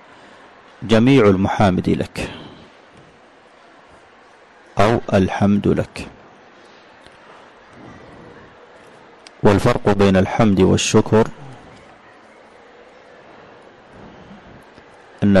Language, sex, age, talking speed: Arabic, male, 40-59, 45 wpm